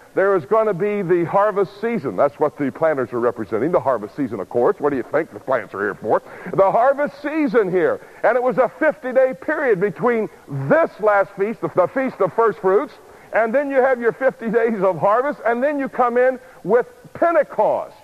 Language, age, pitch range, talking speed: English, 60-79, 190-255 Hz, 210 wpm